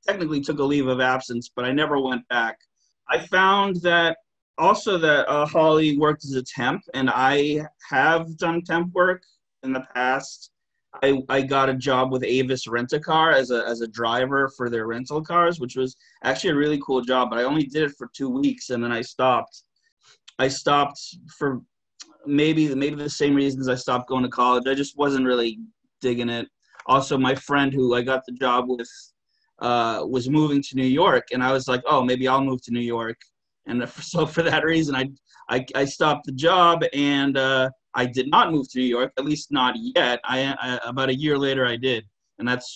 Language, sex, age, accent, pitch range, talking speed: English, male, 30-49, American, 125-150 Hz, 205 wpm